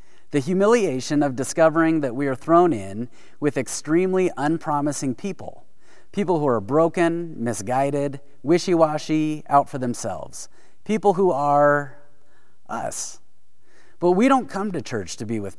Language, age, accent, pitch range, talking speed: English, 30-49, American, 125-165 Hz, 135 wpm